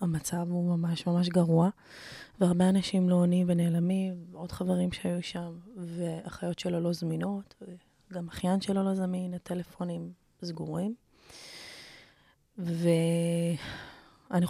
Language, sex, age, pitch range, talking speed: Hebrew, female, 20-39, 170-190 Hz, 110 wpm